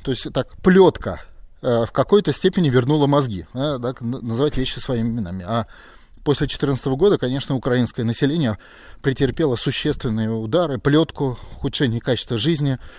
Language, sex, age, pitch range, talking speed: Russian, male, 20-39, 115-160 Hz, 130 wpm